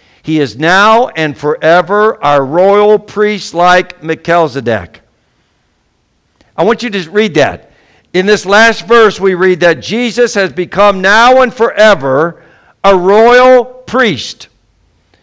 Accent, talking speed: American, 125 wpm